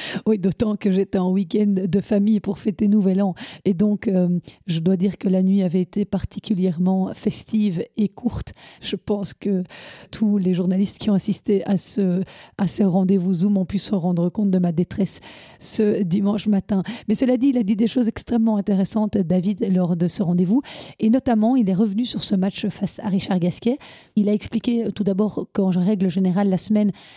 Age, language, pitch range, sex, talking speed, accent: 30-49, French, 190-215 Hz, female, 200 wpm, French